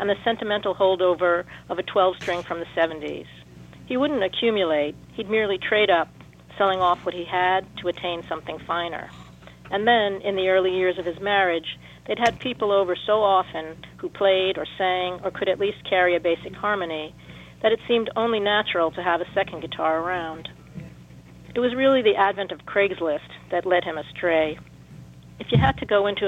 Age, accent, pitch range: 40-59, American, 160-195 Hz